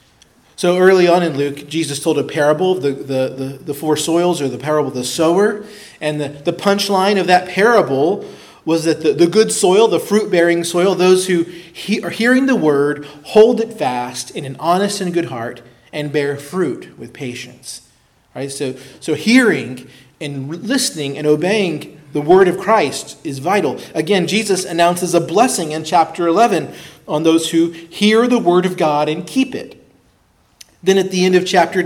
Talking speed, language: 185 wpm, English